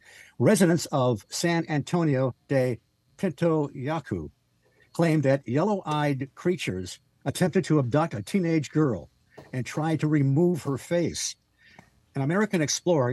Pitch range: 120-155 Hz